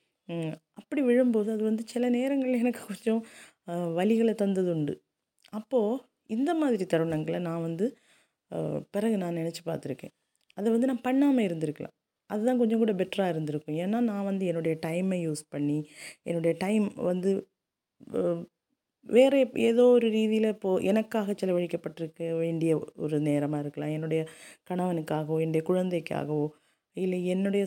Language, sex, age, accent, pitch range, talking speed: Tamil, female, 20-39, native, 165-225 Hz, 125 wpm